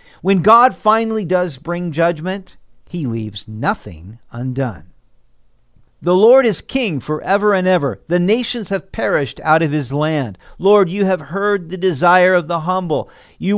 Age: 50-69